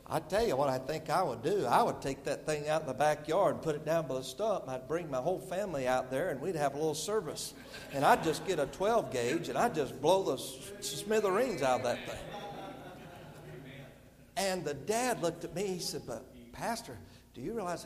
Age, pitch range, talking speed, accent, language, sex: 60-79, 140-220 Hz, 235 wpm, American, English, male